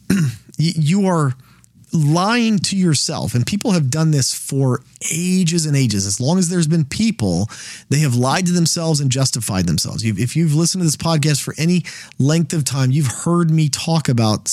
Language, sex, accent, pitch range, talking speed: English, male, American, 125-165 Hz, 180 wpm